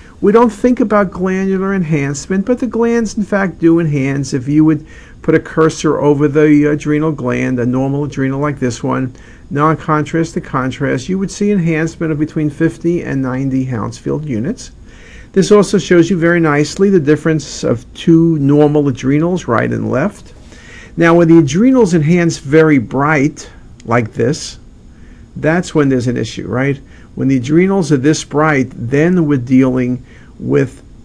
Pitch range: 130-165 Hz